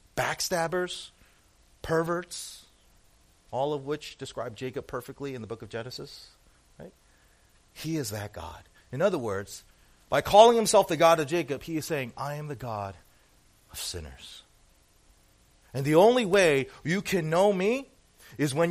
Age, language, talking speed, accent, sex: 40-59, English, 150 wpm, American, male